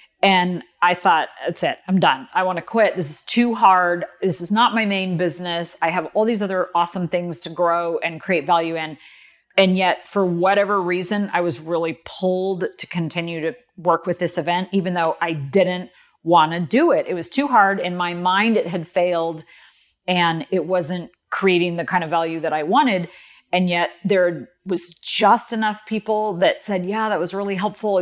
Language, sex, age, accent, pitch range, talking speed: English, female, 40-59, American, 170-205 Hz, 200 wpm